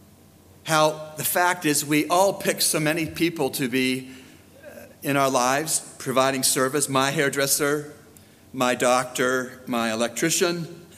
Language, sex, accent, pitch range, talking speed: English, male, American, 115-145 Hz, 125 wpm